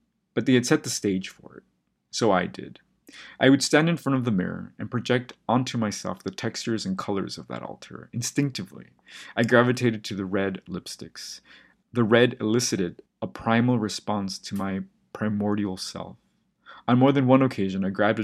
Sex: male